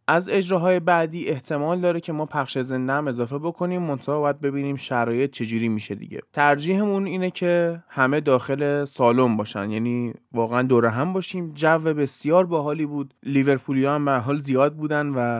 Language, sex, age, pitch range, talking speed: Persian, male, 20-39, 125-160 Hz, 160 wpm